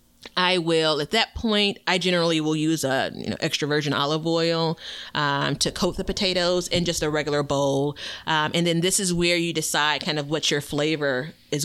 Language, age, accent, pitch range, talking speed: English, 30-49, American, 145-180 Hz, 195 wpm